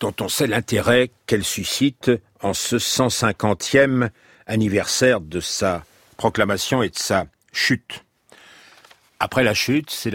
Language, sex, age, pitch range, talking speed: French, male, 50-69, 95-130 Hz, 125 wpm